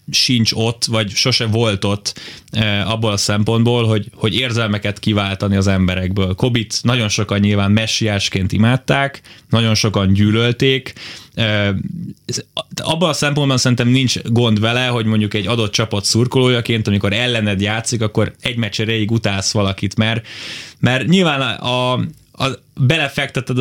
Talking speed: 130 wpm